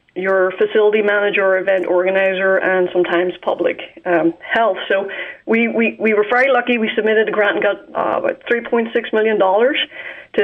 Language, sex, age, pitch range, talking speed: English, female, 30-49, 185-215 Hz, 155 wpm